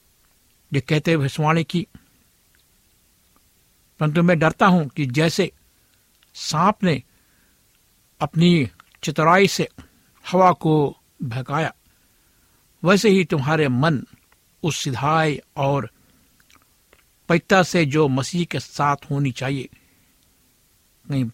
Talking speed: 95 wpm